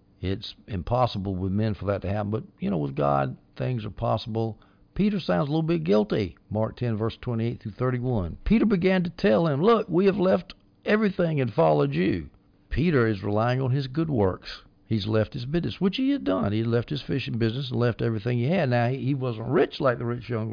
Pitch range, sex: 105-150 Hz, male